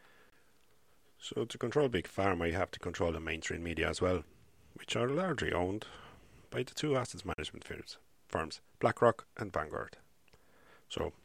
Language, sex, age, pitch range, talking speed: English, male, 40-59, 85-110 Hz, 155 wpm